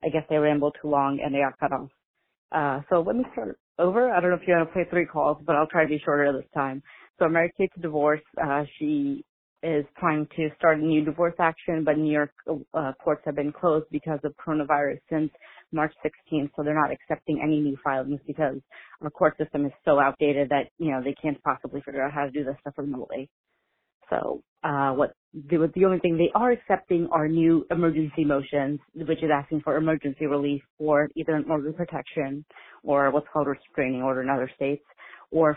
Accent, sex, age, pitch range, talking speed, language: American, female, 30-49, 145-165 Hz, 210 wpm, English